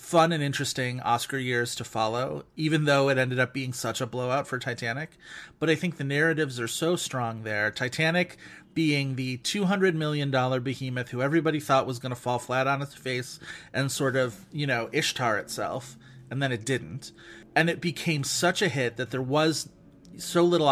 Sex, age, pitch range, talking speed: male, 30-49, 125-160 Hz, 190 wpm